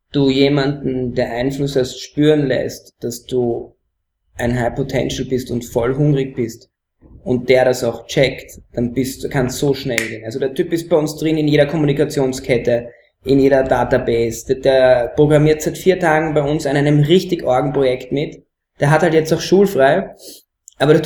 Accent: German